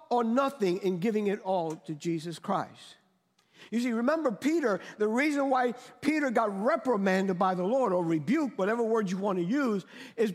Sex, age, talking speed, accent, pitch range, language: male, 50-69, 180 wpm, American, 210-285 Hz, English